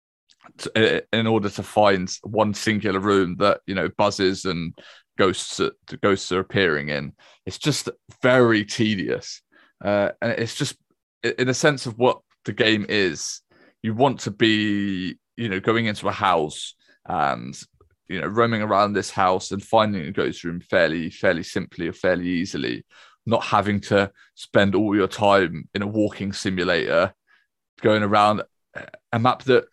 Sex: male